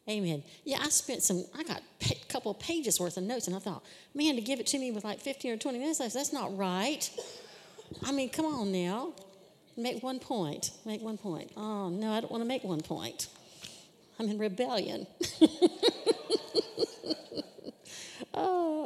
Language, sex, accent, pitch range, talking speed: English, female, American, 180-250 Hz, 175 wpm